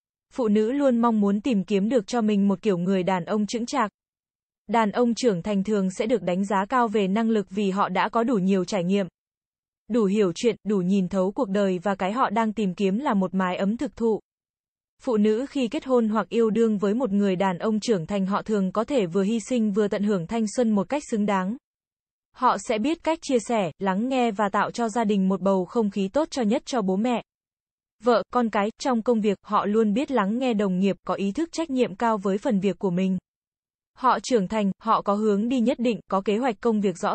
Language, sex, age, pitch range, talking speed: Vietnamese, female, 20-39, 200-240 Hz, 245 wpm